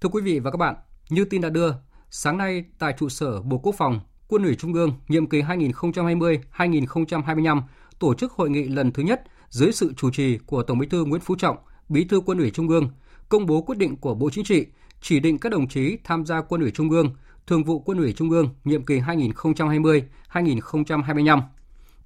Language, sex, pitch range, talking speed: Vietnamese, male, 140-175 Hz, 210 wpm